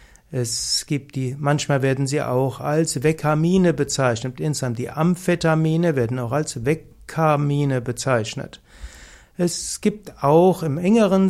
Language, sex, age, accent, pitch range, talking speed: German, male, 60-79, German, 135-170 Hz, 120 wpm